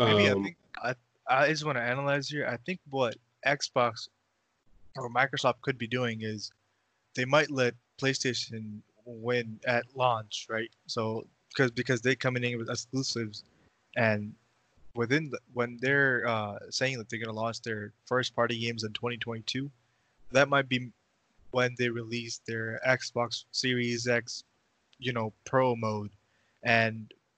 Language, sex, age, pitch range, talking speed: English, male, 20-39, 115-125 Hz, 150 wpm